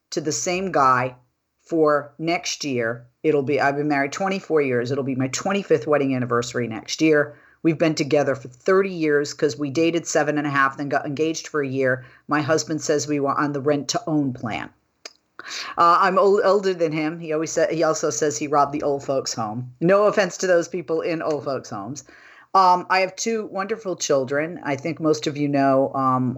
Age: 40-59